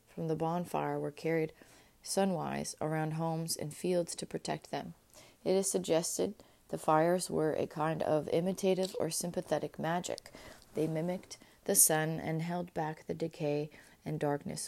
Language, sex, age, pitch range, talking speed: English, female, 30-49, 155-175 Hz, 150 wpm